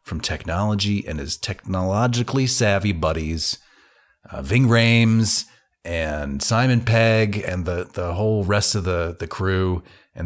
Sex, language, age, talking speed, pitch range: male, English, 30-49, 135 wpm, 100-130 Hz